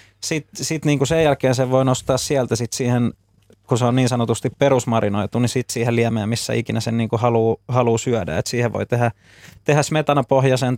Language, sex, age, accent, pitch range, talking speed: Finnish, male, 20-39, native, 115-125 Hz, 190 wpm